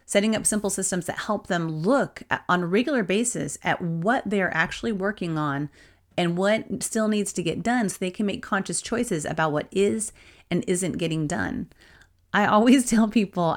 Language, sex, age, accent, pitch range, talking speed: English, female, 30-49, American, 165-215 Hz, 185 wpm